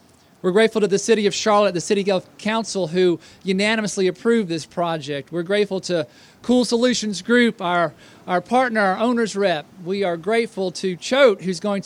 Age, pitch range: 40-59, 155-200 Hz